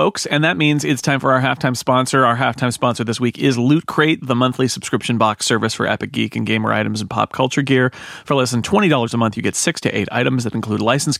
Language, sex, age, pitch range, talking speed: English, male, 30-49, 115-145 Hz, 255 wpm